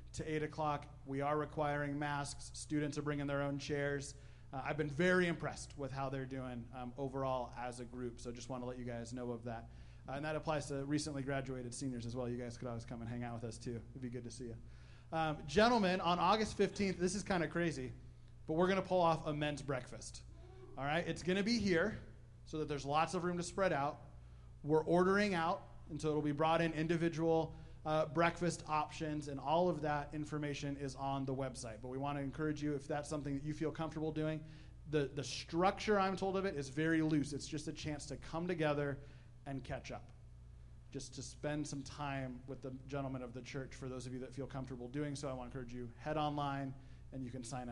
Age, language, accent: 30-49, English, American